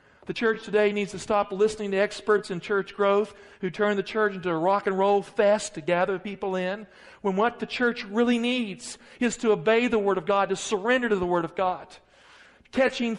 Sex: male